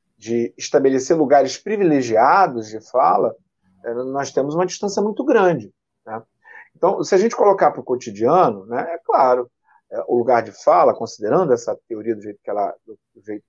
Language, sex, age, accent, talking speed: Portuguese, male, 40-59, Brazilian, 150 wpm